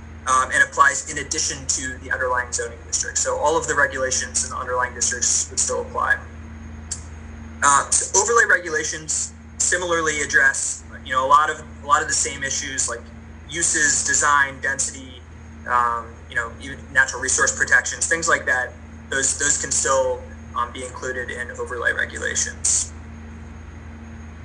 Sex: male